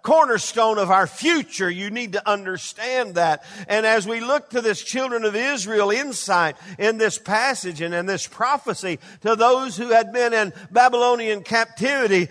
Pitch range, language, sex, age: 175-235 Hz, English, male, 50-69